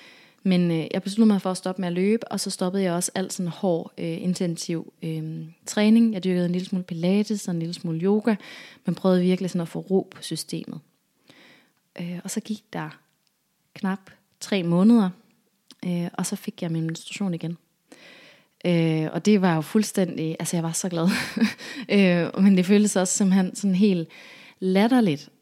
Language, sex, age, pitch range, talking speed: English, female, 20-39, 175-205 Hz, 180 wpm